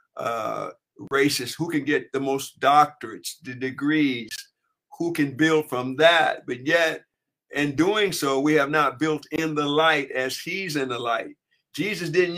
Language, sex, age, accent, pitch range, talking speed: English, male, 60-79, American, 140-170 Hz, 165 wpm